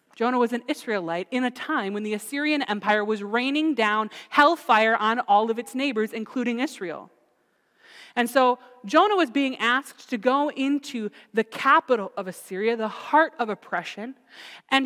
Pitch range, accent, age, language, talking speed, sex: 215-280 Hz, American, 20-39, English, 160 wpm, female